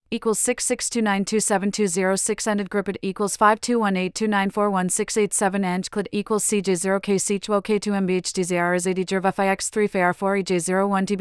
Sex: female